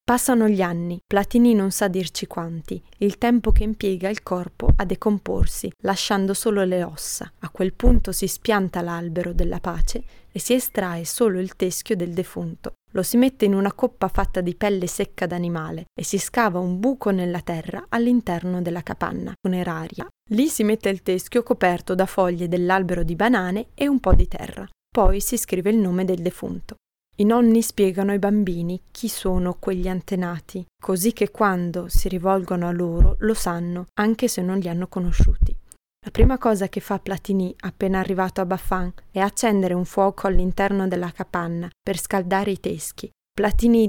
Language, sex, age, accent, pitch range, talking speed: Italian, female, 20-39, native, 180-210 Hz, 175 wpm